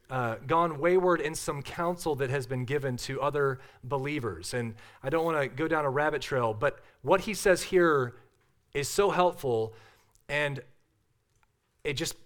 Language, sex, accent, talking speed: English, male, American, 165 wpm